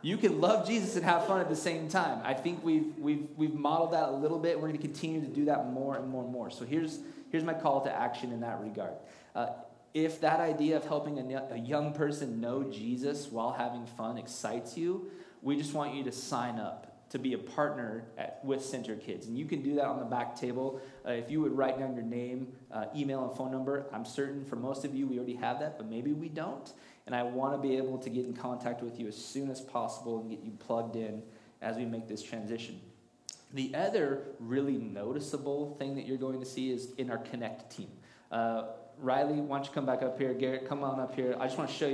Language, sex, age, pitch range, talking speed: English, male, 20-39, 125-155 Hz, 240 wpm